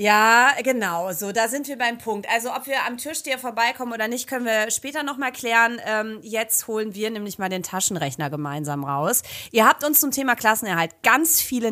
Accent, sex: German, female